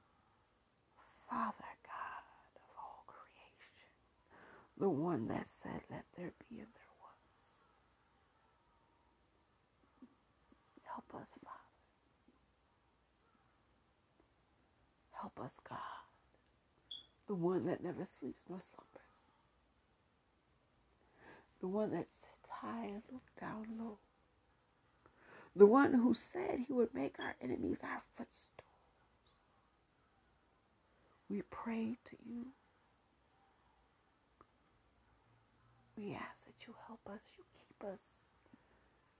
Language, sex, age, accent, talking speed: English, female, 60-79, American, 95 wpm